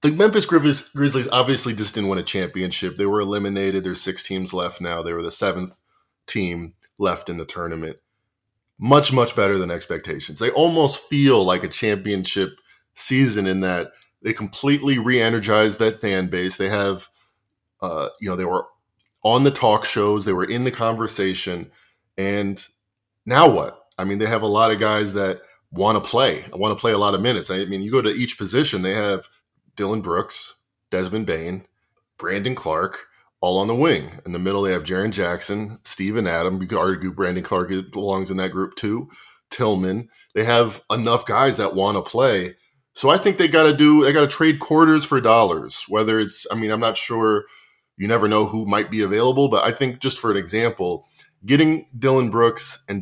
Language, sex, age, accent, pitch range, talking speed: English, male, 20-39, American, 95-120 Hz, 190 wpm